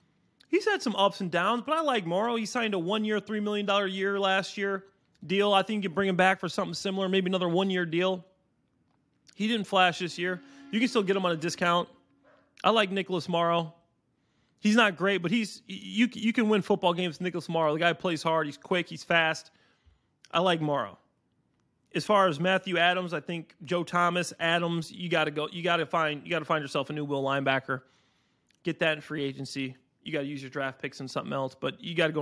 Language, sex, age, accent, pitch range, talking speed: English, male, 30-49, American, 150-185 Hz, 220 wpm